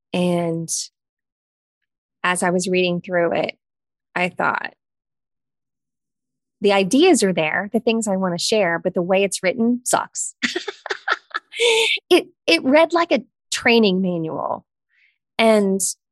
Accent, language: American, English